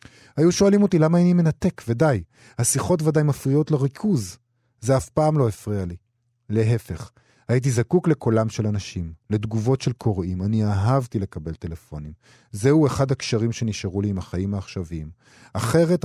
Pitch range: 105-135 Hz